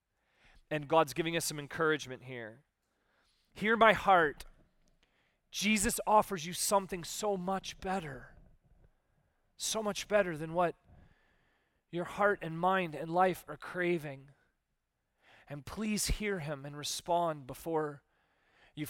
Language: English